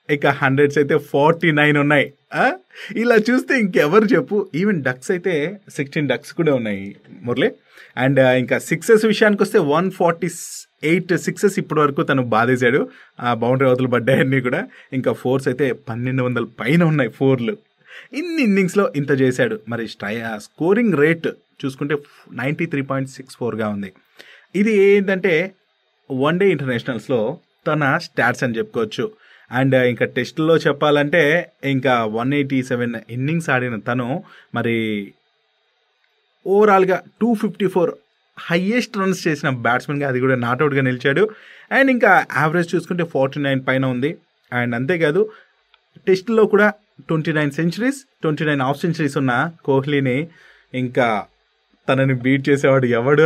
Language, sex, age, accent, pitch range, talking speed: Telugu, male, 30-49, native, 130-185 Hz, 120 wpm